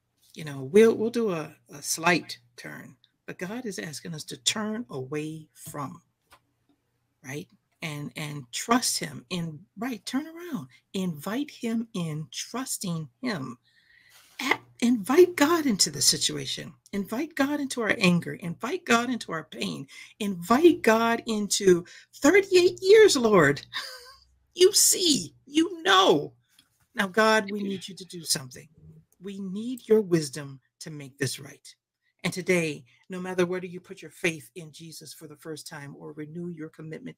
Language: English